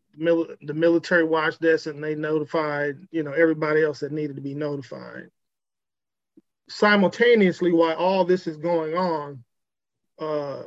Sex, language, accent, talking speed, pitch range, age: male, English, American, 135 wpm, 155-180 Hz, 40-59